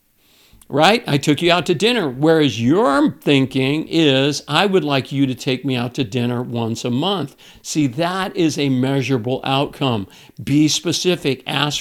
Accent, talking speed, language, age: American, 170 wpm, English, 50-69